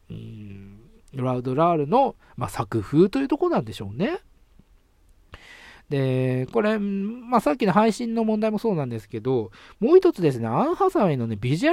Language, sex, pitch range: Japanese, male, 120-180 Hz